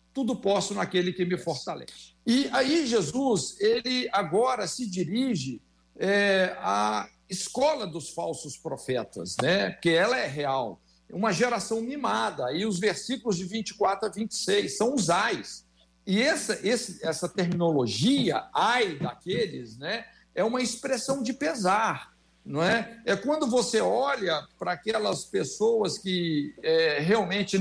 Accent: Brazilian